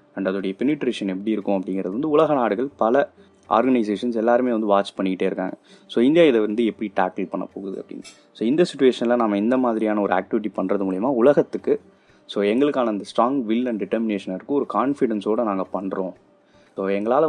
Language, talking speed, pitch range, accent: Tamil, 175 wpm, 100-120 Hz, native